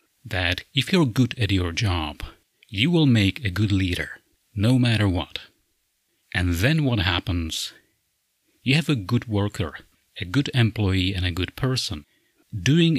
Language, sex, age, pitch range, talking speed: English, male, 30-49, 95-125 Hz, 150 wpm